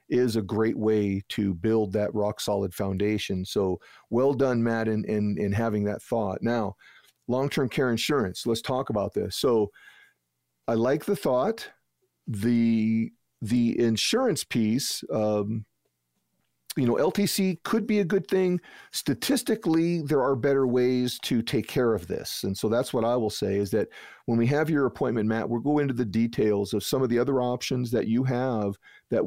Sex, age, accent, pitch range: male, 40-59, American, 105-125 Hz